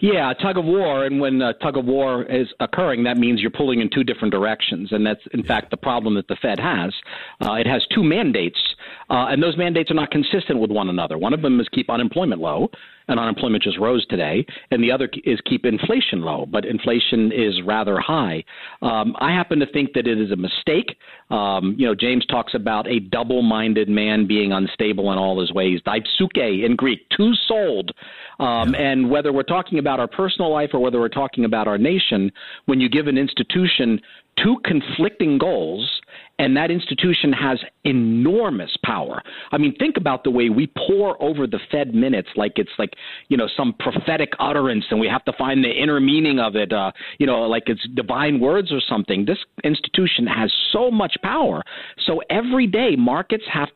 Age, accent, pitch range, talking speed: 50-69, American, 115-170 Hz, 195 wpm